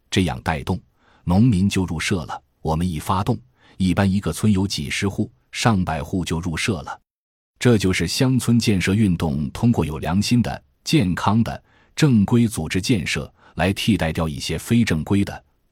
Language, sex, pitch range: Chinese, male, 80-110 Hz